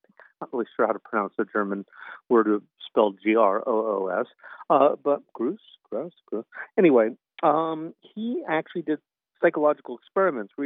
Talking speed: 160 wpm